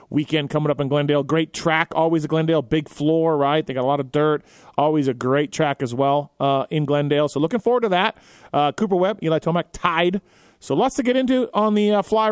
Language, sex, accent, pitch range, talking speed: English, male, American, 145-185 Hz, 235 wpm